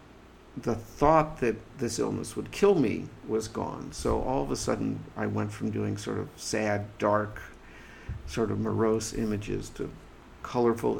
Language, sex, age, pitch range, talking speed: English, male, 50-69, 110-125 Hz, 160 wpm